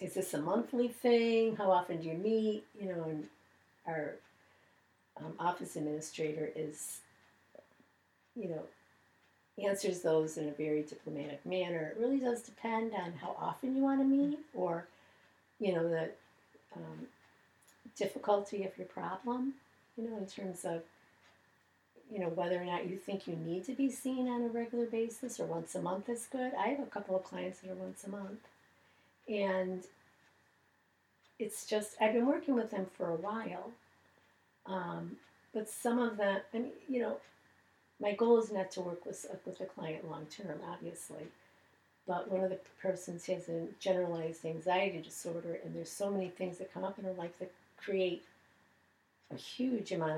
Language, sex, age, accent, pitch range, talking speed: English, female, 50-69, American, 170-220 Hz, 170 wpm